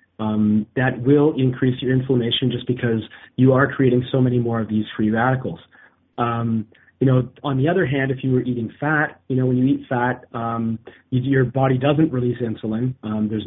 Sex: male